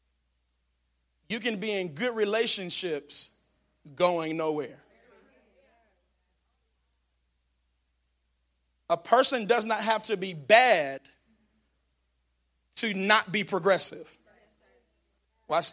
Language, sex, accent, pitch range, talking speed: English, male, American, 160-220 Hz, 80 wpm